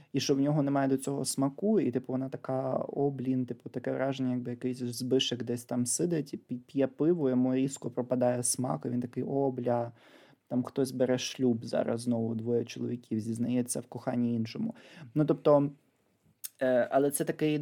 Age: 20-39